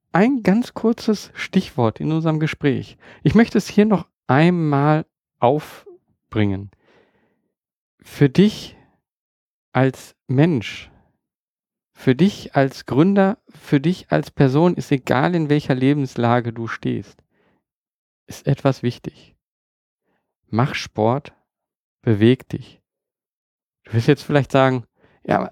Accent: German